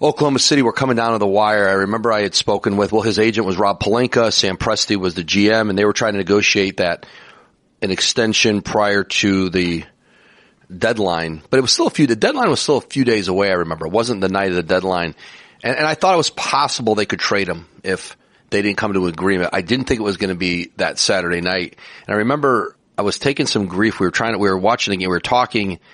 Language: English